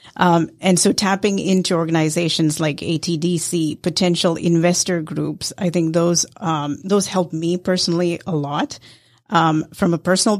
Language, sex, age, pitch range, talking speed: English, female, 30-49, 160-195 Hz, 145 wpm